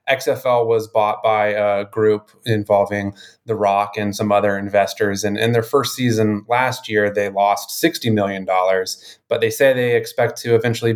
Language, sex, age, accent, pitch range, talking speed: English, male, 20-39, American, 105-120 Hz, 170 wpm